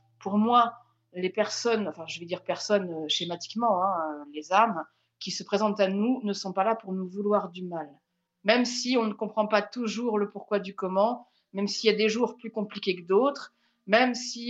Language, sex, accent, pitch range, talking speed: French, female, French, 185-225 Hz, 210 wpm